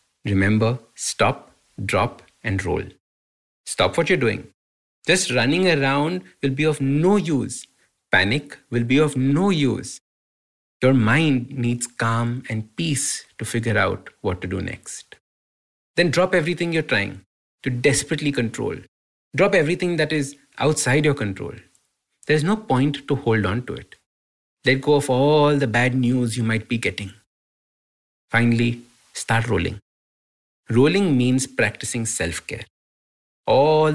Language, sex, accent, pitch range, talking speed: English, male, Indian, 110-140 Hz, 140 wpm